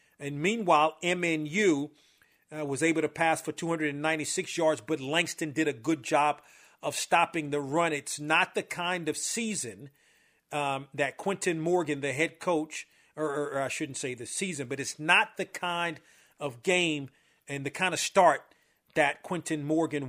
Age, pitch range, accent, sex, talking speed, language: 40-59, 145-175 Hz, American, male, 170 wpm, English